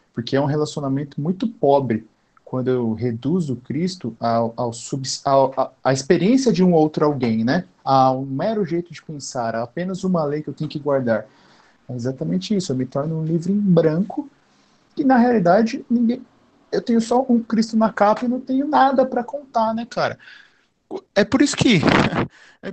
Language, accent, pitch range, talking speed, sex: Portuguese, Brazilian, 135-210 Hz, 190 wpm, male